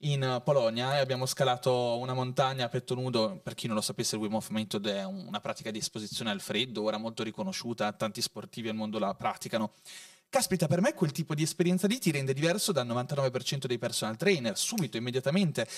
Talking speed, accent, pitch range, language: 200 wpm, native, 125-185 Hz, Italian